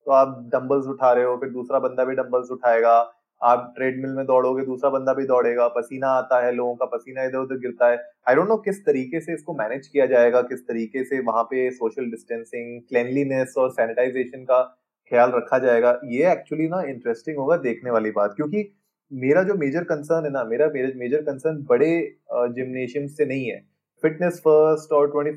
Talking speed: 185 wpm